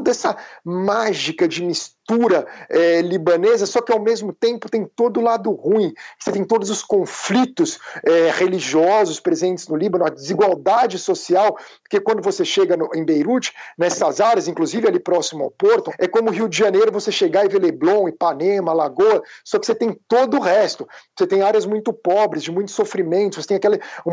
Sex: male